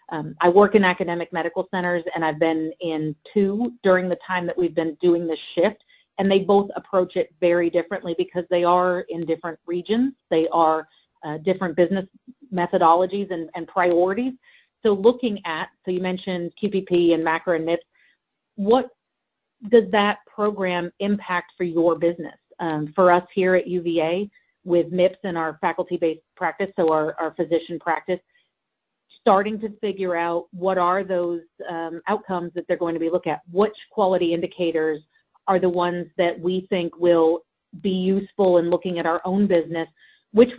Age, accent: 40-59, American